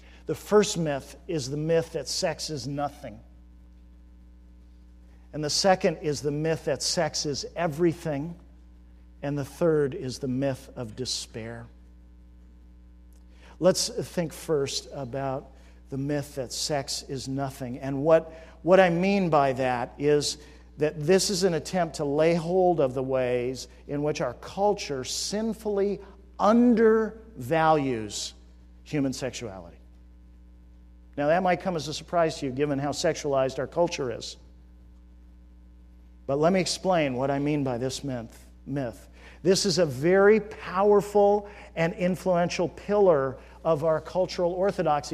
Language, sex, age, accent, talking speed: English, male, 50-69, American, 135 wpm